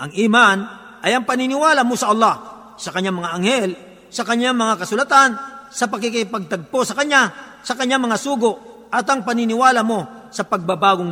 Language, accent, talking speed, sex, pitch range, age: Filipino, native, 160 wpm, male, 195-255 Hz, 50-69